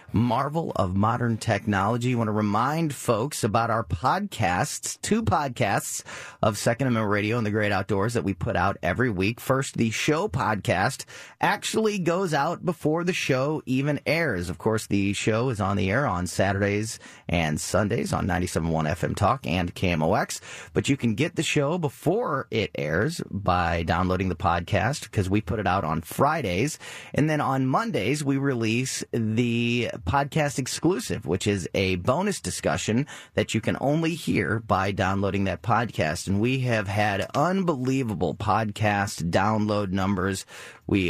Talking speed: 160 wpm